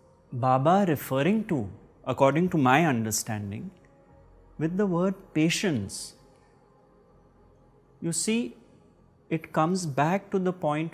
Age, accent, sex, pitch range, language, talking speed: 30-49, Indian, male, 120-165 Hz, English, 105 wpm